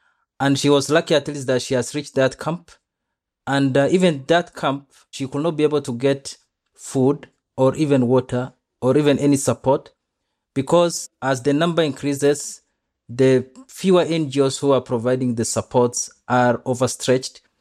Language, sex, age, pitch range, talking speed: English, male, 30-49, 125-145 Hz, 160 wpm